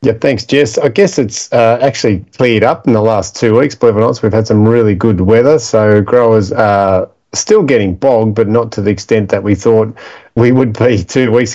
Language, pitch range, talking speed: English, 105-115 Hz, 220 wpm